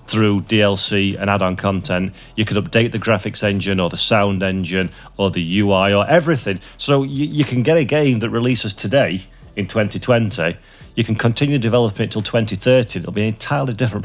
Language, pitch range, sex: English, 100-130 Hz, male